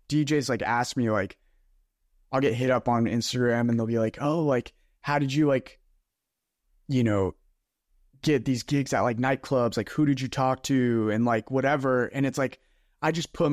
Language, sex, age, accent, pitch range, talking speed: English, male, 20-39, American, 120-145 Hz, 195 wpm